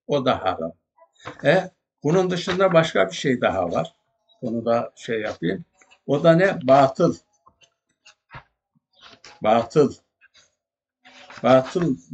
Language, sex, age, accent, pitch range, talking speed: Turkish, male, 60-79, native, 120-150 Hz, 105 wpm